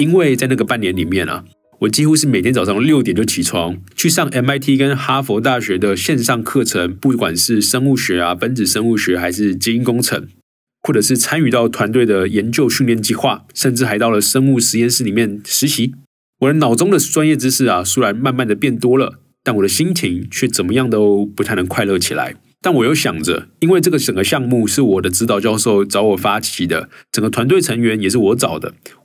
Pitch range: 100-135 Hz